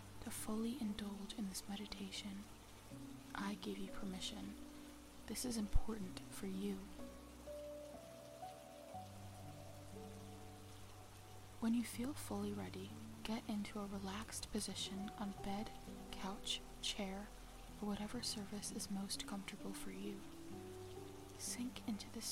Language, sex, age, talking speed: English, female, 20-39, 105 wpm